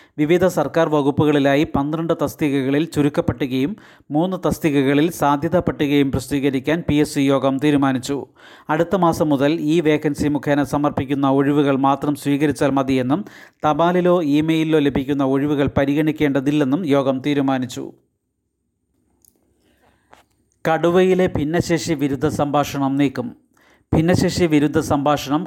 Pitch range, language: 140-155 Hz, Malayalam